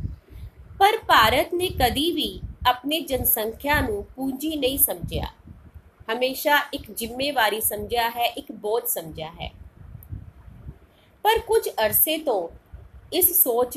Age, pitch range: 30-49, 230-345 Hz